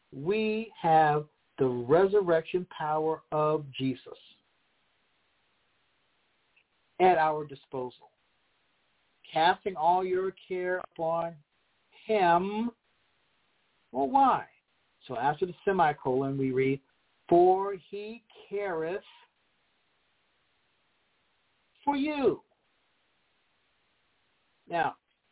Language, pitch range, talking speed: English, 130-185 Hz, 70 wpm